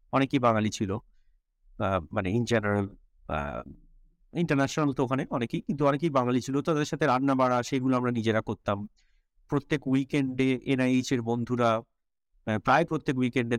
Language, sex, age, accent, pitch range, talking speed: Bengali, male, 50-69, native, 110-145 Hz, 130 wpm